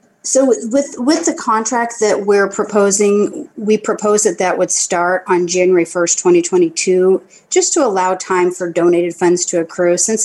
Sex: female